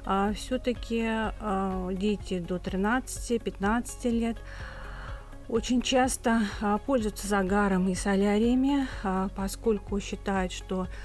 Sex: female